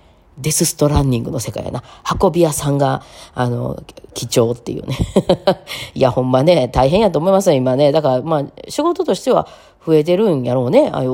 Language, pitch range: Japanese, 125-175 Hz